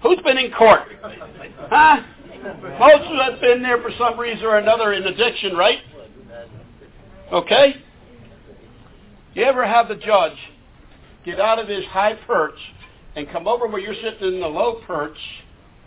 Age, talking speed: 60-79, 155 wpm